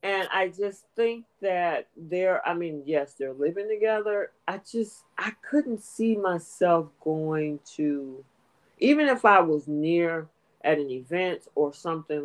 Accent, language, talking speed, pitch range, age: American, English, 145 wpm, 145-195 Hz, 40-59